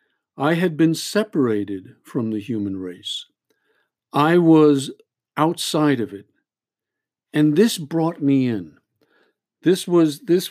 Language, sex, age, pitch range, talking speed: English, male, 50-69, 115-155 Hz, 120 wpm